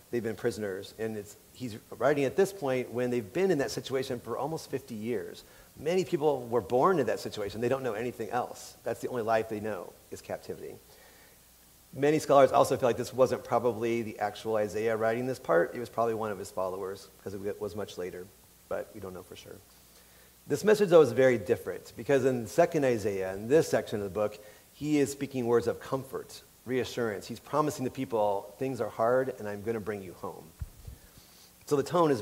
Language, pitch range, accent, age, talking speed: English, 105-140 Hz, American, 40-59, 210 wpm